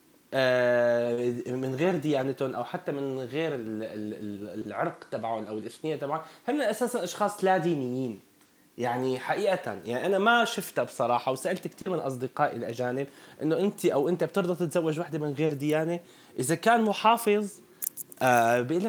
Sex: male